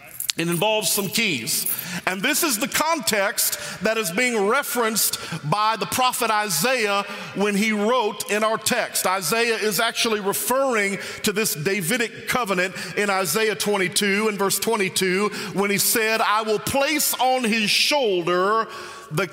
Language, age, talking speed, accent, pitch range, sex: English, 40-59, 145 wpm, American, 185-230 Hz, male